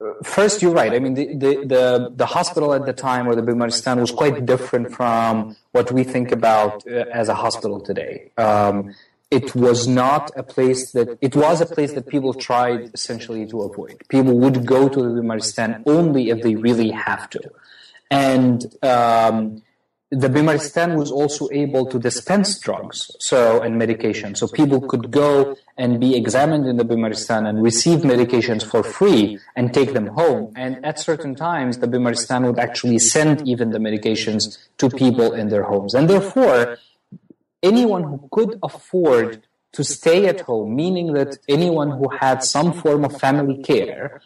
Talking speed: 170 wpm